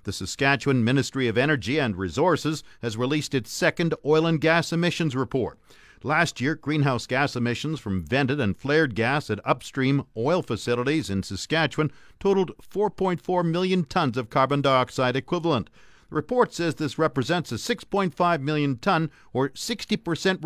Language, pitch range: English, 125-160 Hz